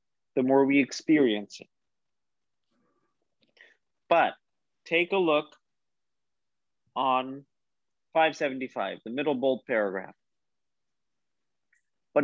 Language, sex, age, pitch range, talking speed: English, male, 30-49, 130-165 Hz, 80 wpm